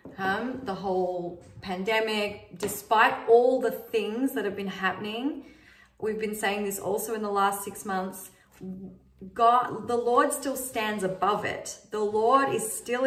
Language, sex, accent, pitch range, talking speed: Dutch, female, Australian, 195-235 Hz, 150 wpm